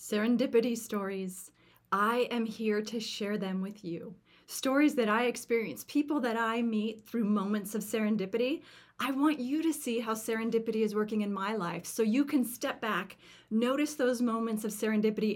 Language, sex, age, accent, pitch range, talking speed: English, female, 30-49, American, 195-245 Hz, 170 wpm